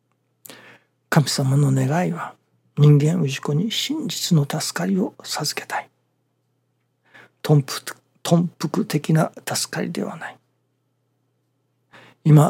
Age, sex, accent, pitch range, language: 60-79, male, native, 130-195 Hz, Japanese